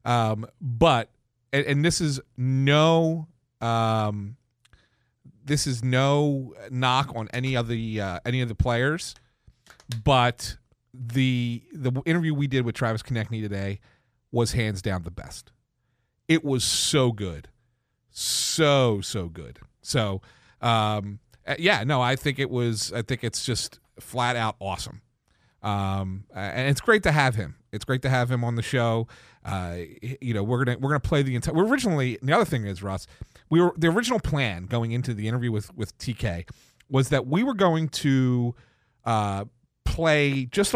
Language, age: English, 40-59